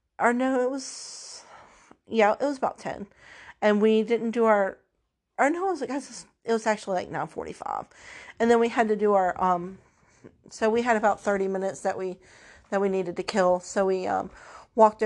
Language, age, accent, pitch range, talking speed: English, 40-59, American, 190-225 Hz, 205 wpm